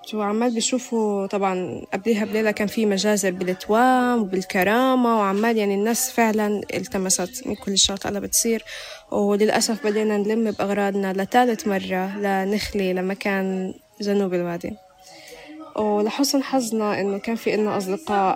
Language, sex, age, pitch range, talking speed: Arabic, female, 20-39, 190-225 Hz, 120 wpm